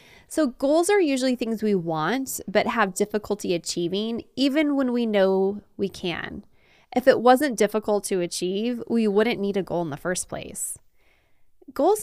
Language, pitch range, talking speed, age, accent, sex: English, 195-255 Hz, 165 wpm, 20-39, American, female